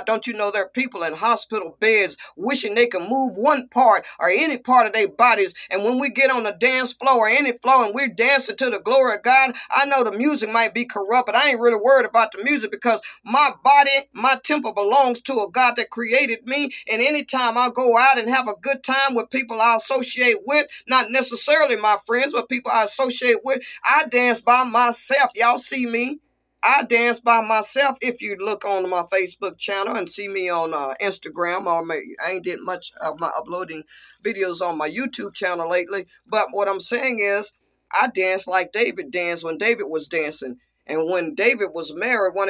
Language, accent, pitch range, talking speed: English, American, 195-260 Hz, 210 wpm